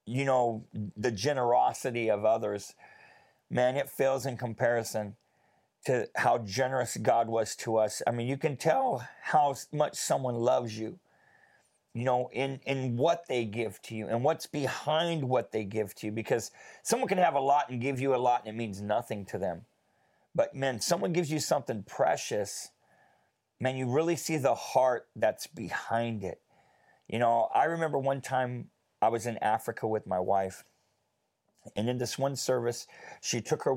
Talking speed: 175 wpm